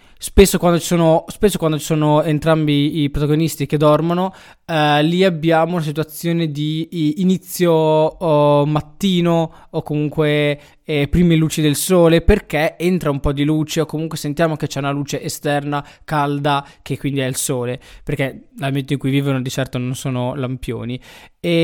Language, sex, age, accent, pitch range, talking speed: Italian, male, 20-39, native, 140-165 Hz, 165 wpm